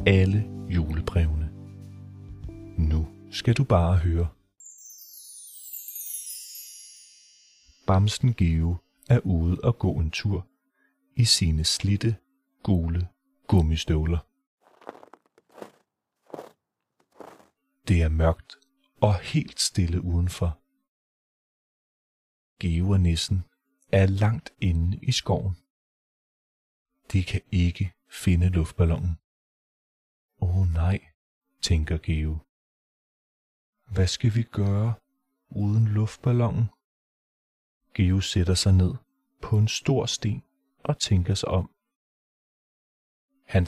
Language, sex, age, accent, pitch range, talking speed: Danish, male, 40-59, native, 85-110 Hz, 90 wpm